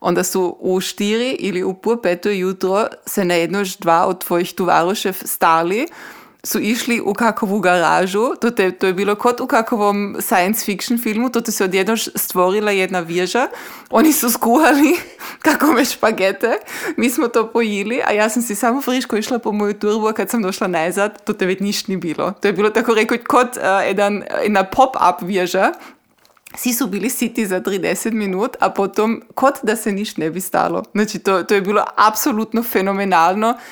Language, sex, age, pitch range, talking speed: Croatian, female, 20-39, 185-230 Hz, 175 wpm